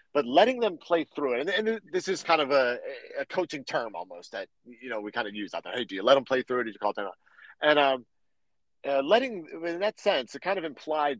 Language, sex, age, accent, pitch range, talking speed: English, male, 40-59, American, 130-175 Hz, 270 wpm